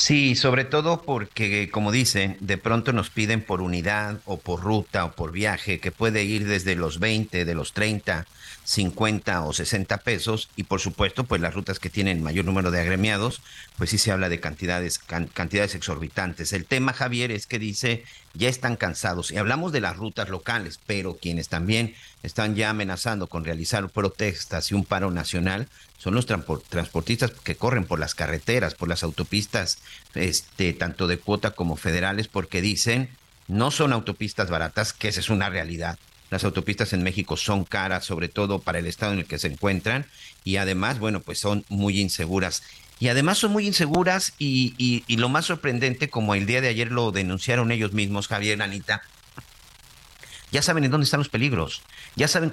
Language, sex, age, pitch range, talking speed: Spanish, male, 50-69, 95-125 Hz, 185 wpm